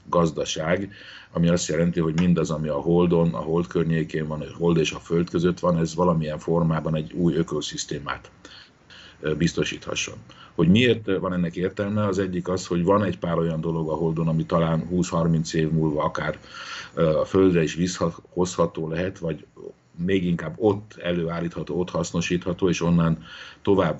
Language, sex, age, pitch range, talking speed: Hungarian, male, 50-69, 80-90 Hz, 160 wpm